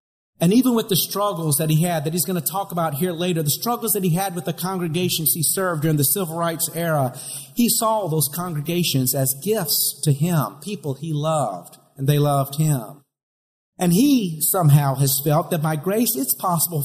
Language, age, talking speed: English, 50-69, 200 wpm